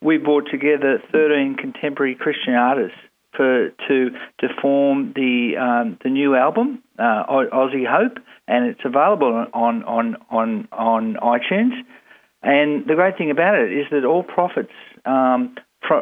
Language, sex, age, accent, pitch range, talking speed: English, male, 50-69, Australian, 125-150 Hz, 145 wpm